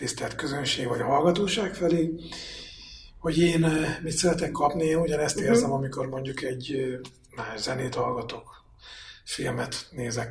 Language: Hungarian